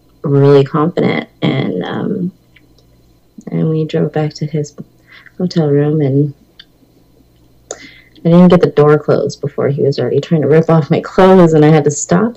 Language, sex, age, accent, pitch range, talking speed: English, female, 30-49, American, 145-190 Hz, 165 wpm